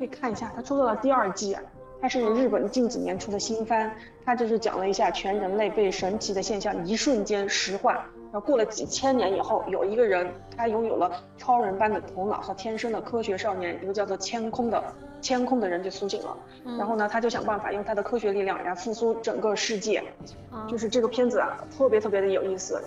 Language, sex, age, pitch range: Chinese, female, 20-39, 195-240 Hz